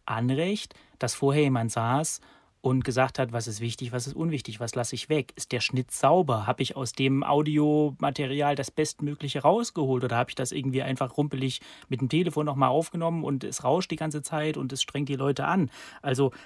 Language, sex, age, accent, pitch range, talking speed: German, male, 30-49, German, 130-150 Hz, 200 wpm